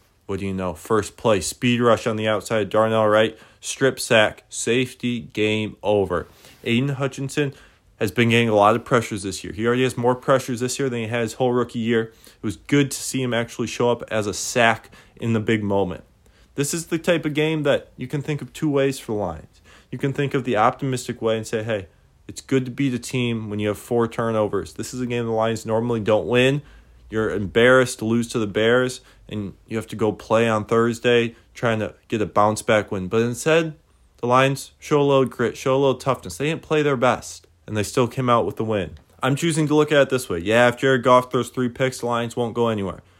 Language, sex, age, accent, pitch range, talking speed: English, male, 20-39, American, 110-135 Hz, 240 wpm